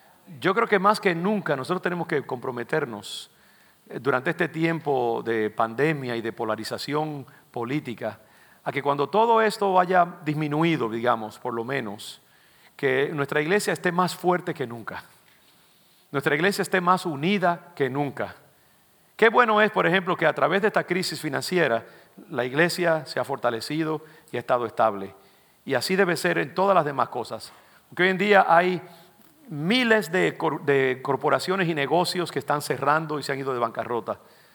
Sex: male